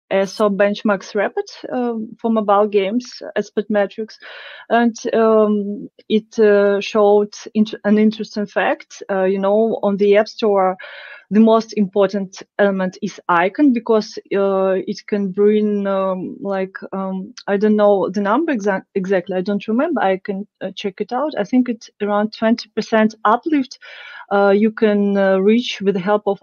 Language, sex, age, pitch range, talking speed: English, female, 30-49, 200-230 Hz, 155 wpm